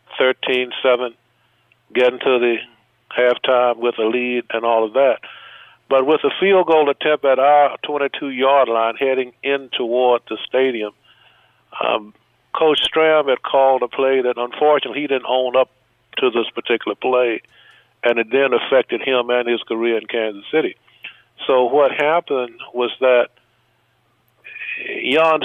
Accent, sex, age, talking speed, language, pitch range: American, male, 50-69, 150 wpm, English, 120-145 Hz